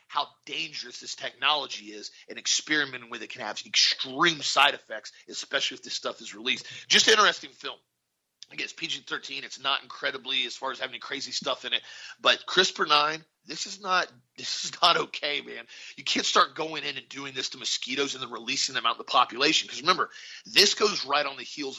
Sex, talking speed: male, 200 wpm